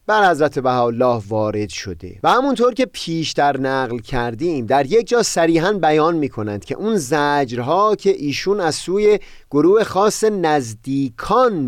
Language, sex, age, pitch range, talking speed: Persian, male, 30-49, 120-165 Hz, 145 wpm